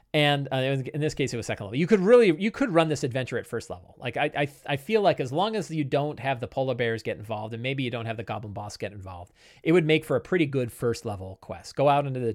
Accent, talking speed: American, 300 wpm